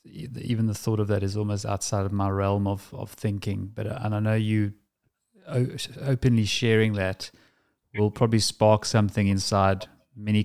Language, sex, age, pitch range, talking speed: English, male, 30-49, 100-120 Hz, 160 wpm